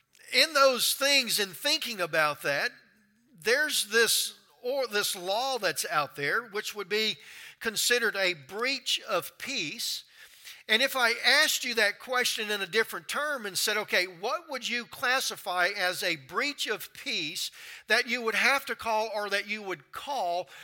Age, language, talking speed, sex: 50-69, English, 165 wpm, male